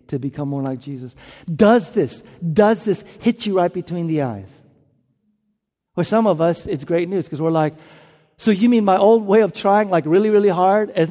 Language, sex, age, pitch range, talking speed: English, male, 50-69, 140-220 Hz, 205 wpm